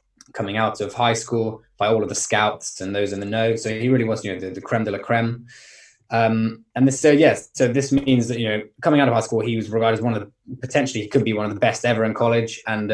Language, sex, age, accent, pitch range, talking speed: English, male, 20-39, British, 110-130 Hz, 290 wpm